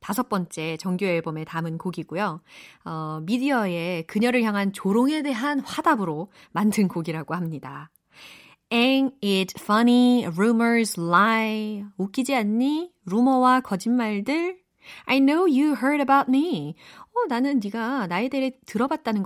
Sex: female